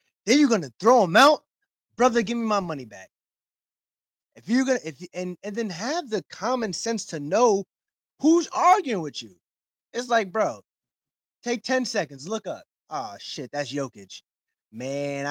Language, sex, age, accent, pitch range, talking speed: English, male, 20-39, American, 155-235 Hz, 165 wpm